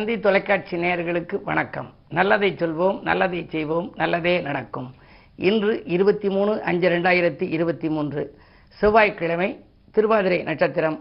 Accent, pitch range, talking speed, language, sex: native, 150-190 Hz, 100 wpm, Tamil, female